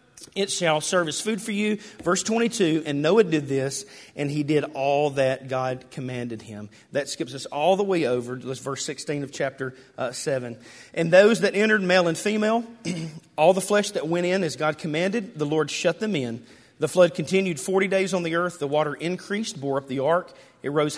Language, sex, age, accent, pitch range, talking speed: English, male, 40-59, American, 140-190 Hz, 210 wpm